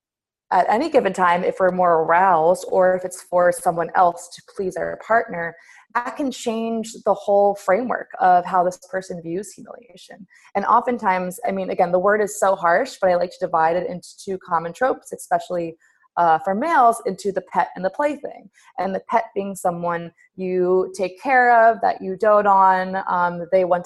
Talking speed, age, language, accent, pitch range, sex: 190 wpm, 20-39, English, American, 175-200 Hz, female